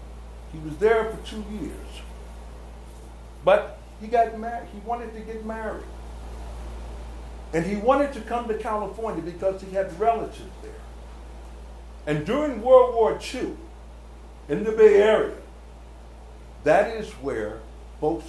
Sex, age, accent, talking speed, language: male, 60-79, American, 130 wpm, English